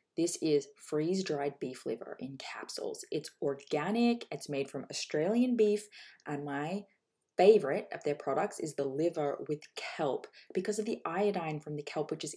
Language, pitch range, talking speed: English, 150-220 Hz, 165 wpm